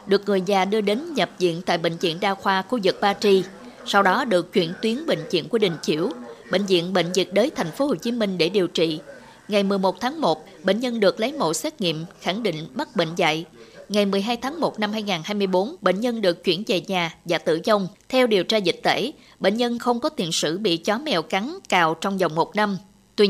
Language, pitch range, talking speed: Vietnamese, 180-230 Hz, 235 wpm